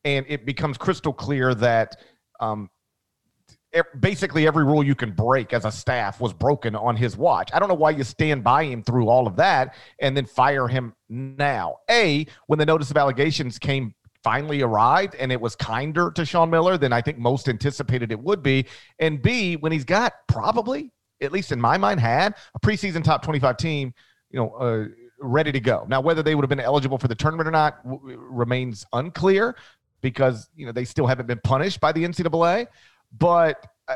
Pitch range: 125-160 Hz